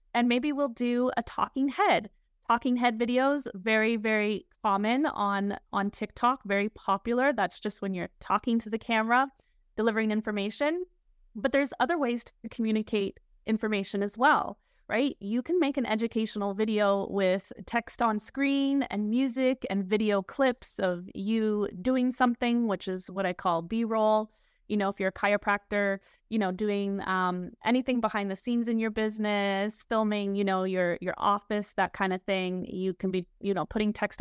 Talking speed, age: 170 wpm, 20-39